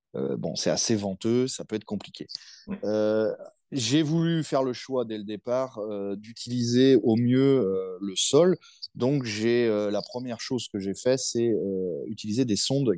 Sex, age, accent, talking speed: male, 30-49, French, 180 wpm